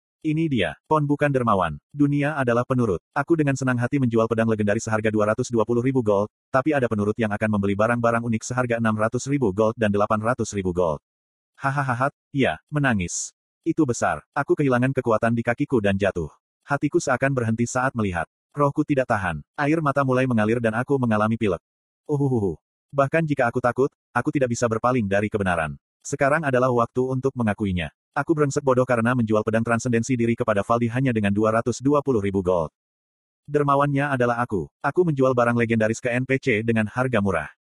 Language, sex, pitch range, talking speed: Indonesian, male, 110-135 Hz, 165 wpm